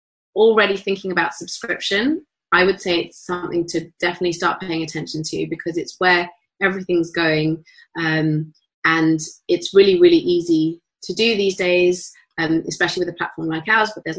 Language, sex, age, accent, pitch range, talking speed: English, female, 30-49, British, 175-215 Hz, 165 wpm